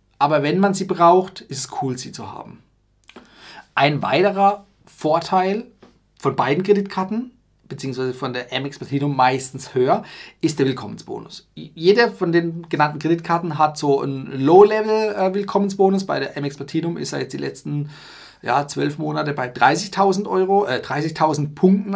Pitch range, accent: 135-180 Hz, German